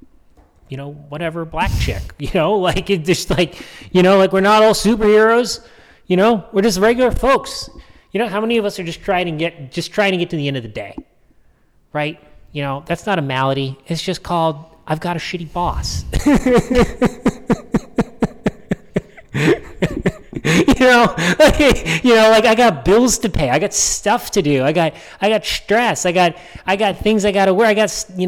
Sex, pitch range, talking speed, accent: male, 165-220 Hz, 190 wpm, American